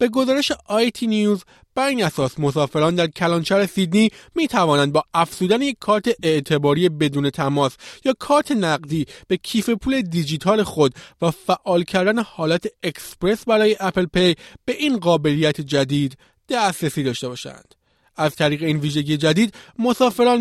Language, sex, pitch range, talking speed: Persian, male, 155-210 Hz, 140 wpm